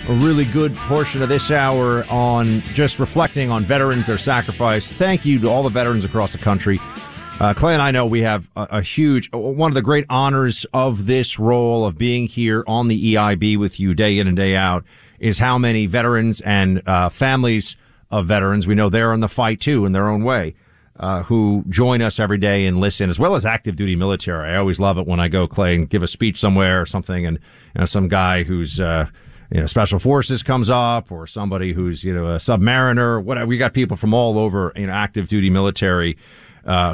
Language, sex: English, male